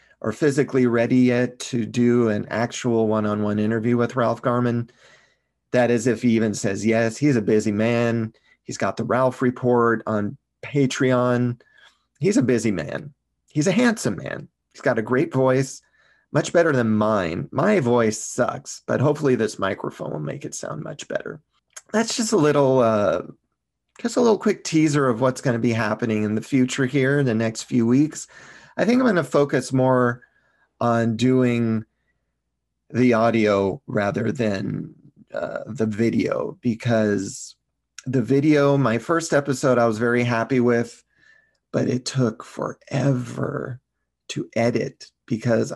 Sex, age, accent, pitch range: male, 30-49, American, 110-135 Hz